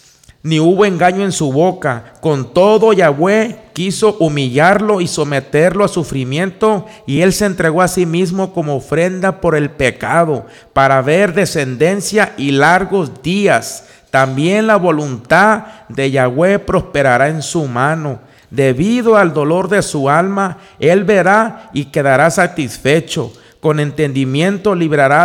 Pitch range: 145-190 Hz